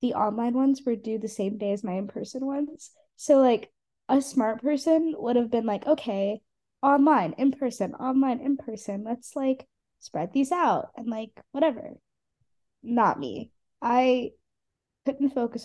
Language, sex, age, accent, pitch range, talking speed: English, female, 10-29, American, 205-260 Hz, 150 wpm